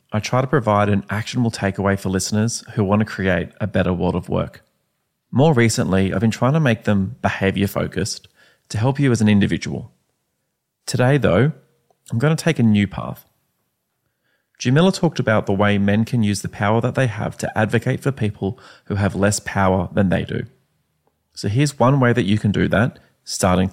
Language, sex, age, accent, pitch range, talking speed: English, male, 30-49, Australian, 100-130 Hz, 190 wpm